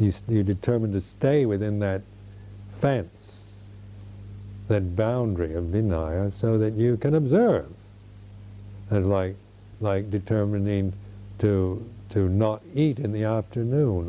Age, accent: 60-79, American